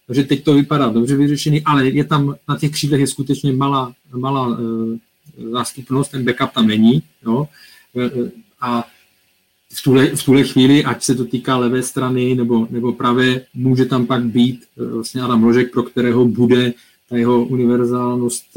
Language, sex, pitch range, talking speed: Czech, male, 120-145 Hz, 170 wpm